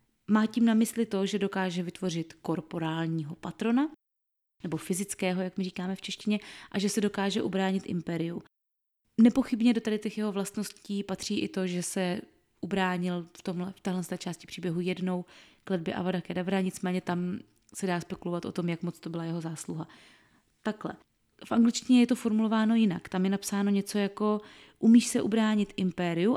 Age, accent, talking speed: 20-39, native, 165 wpm